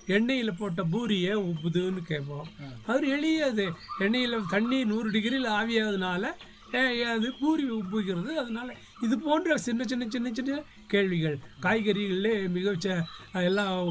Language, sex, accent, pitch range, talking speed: English, male, Indian, 170-220 Hz, 165 wpm